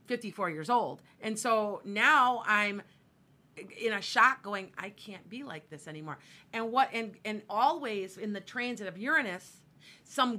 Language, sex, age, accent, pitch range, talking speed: English, female, 40-59, American, 185-245 Hz, 160 wpm